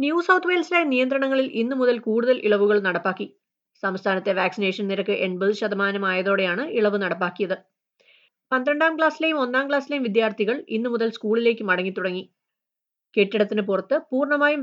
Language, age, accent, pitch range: Malayalam, 30-49, native, 195-270 Hz